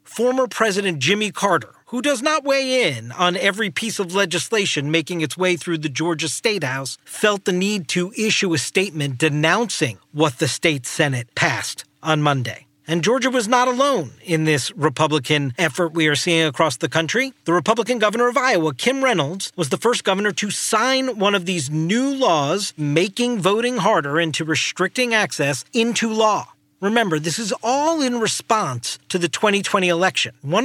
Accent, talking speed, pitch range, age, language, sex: American, 175 wpm, 160-215 Hz, 40-59, English, male